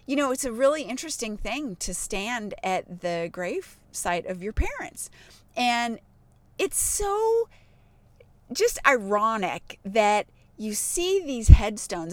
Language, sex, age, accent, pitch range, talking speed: English, female, 30-49, American, 190-280 Hz, 130 wpm